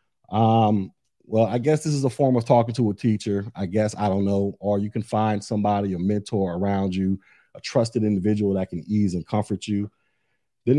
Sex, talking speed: male, 205 wpm